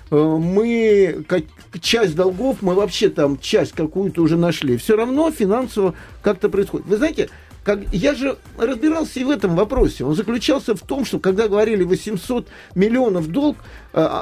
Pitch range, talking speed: 165-245 Hz, 150 wpm